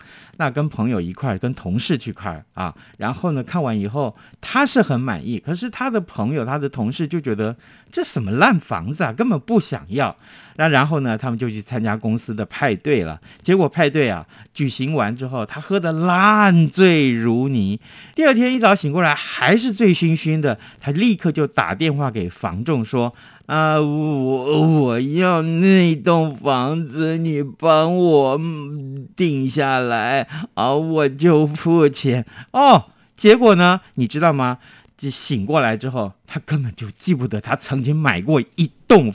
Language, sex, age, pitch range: Chinese, male, 50-69, 115-165 Hz